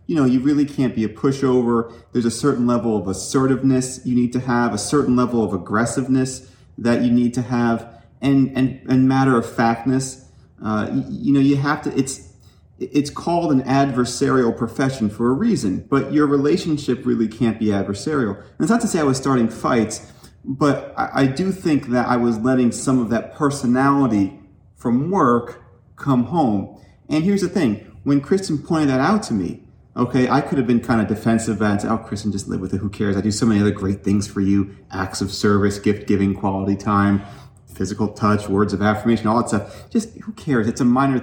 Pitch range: 105-135 Hz